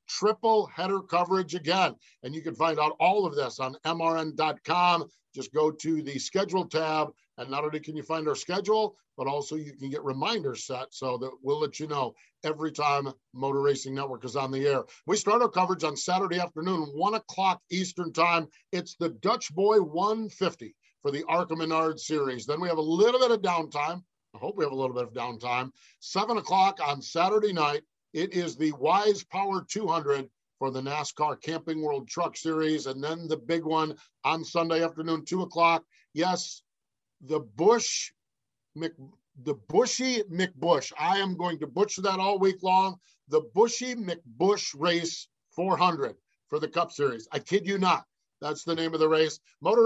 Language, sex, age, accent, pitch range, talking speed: English, male, 50-69, American, 150-185 Hz, 185 wpm